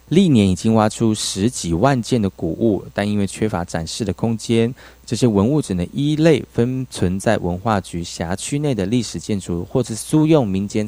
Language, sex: Chinese, male